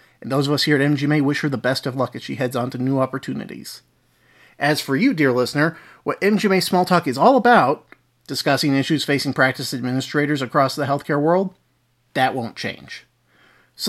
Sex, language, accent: male, English, American